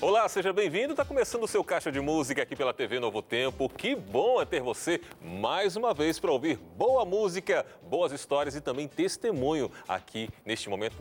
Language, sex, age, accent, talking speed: Portuguese, male, 40-59, Brazilian, 190 wpm